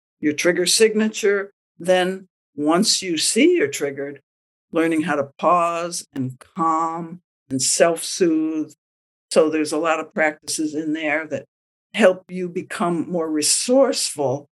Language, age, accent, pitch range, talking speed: English, 60-79, American, 150-190 Hz, 130 wpm